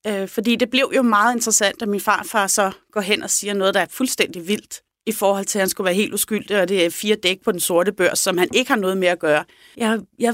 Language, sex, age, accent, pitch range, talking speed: Danish, female, 30-49, native, 190-245 Hz, 275 wpm